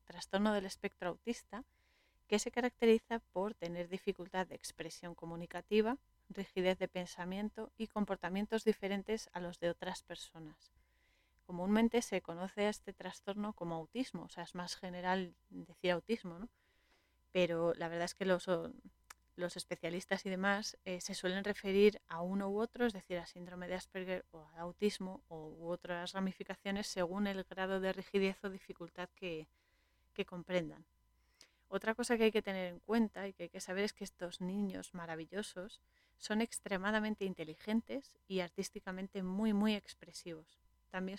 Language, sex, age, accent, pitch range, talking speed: Spanish, female, 30-49, Spanish, 175-210 Hz, 155 wpm